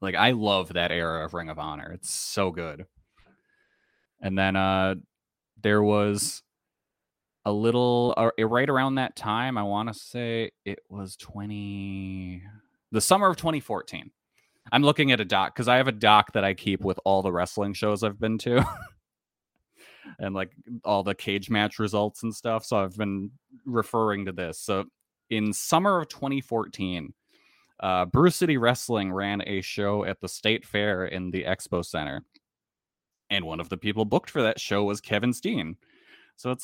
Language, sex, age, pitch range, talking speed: English, male, 20-39, 100-130 Hz, 170 wpm